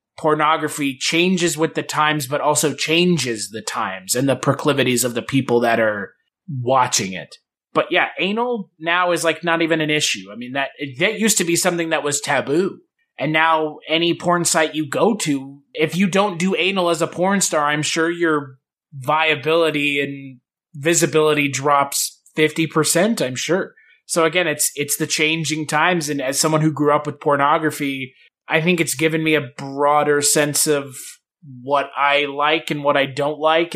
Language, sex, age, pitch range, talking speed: English, male, 20-39, 145-170 Hz, 180 wpm